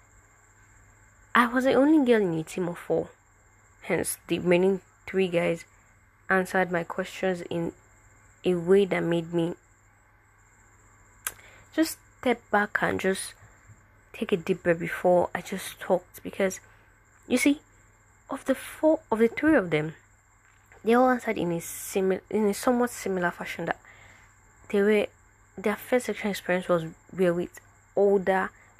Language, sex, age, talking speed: English, female, 20-39, 145 wpm